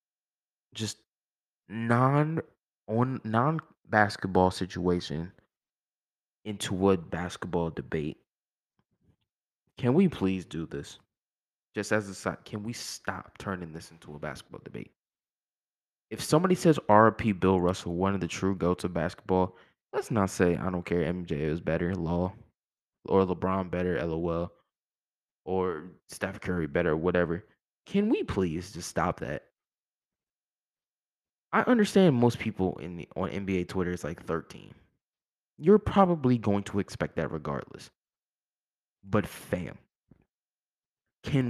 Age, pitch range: 20-39, 90-120 Hz